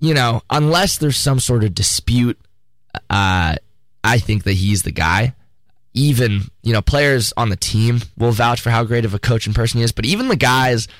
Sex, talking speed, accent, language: male, 205 wpm, American, English